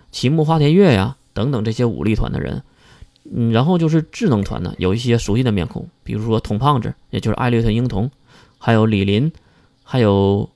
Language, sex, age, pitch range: Chinese, male, 20-39, 110-140 Hz